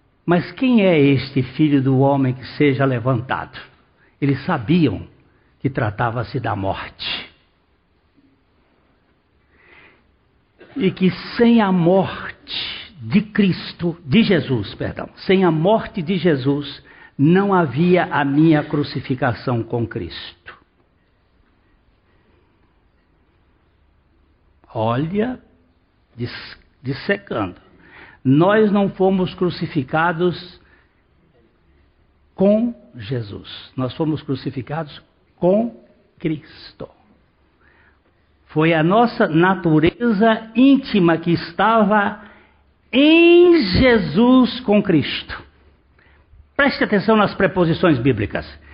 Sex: male